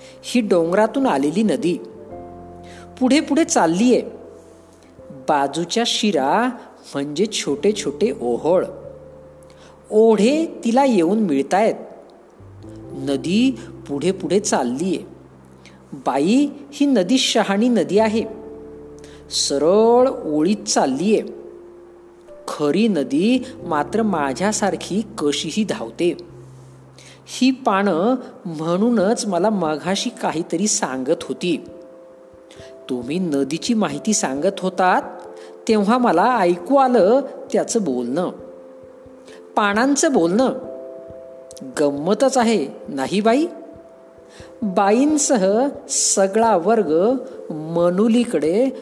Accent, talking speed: native, 75 wpm